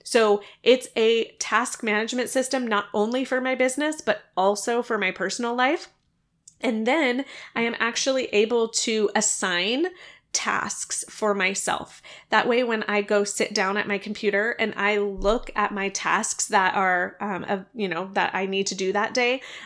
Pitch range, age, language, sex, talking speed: 200-230 Hz, 20-39, English, female, 175 wpm